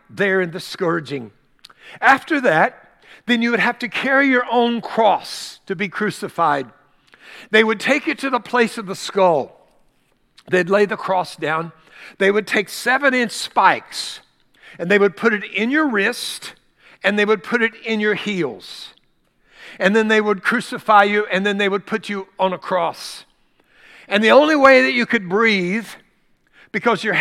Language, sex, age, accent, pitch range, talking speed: English, male, 60-79, American, 180-235 Hz, 175 wpm